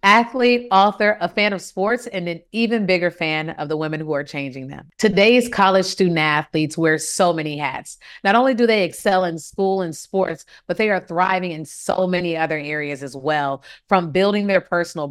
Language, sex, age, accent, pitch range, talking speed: English, female, 30-49, American, 155-195 Hz, 195 wpm